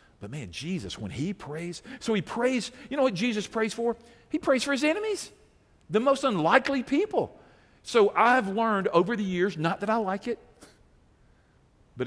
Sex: male